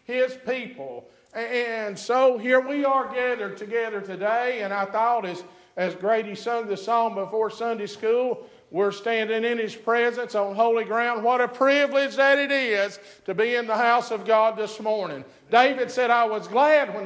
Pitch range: 230-295 Hz